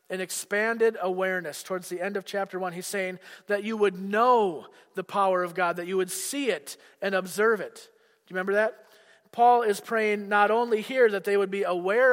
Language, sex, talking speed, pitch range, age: English, male, 210 wpm, 175-215 Hz, 40-59